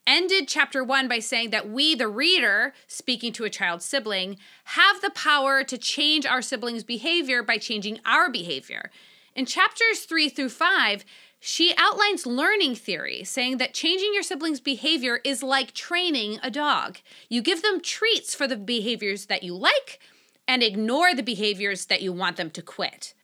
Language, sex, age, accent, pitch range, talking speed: English, female, 30-49, American, 210-325 Hz, 170 wpm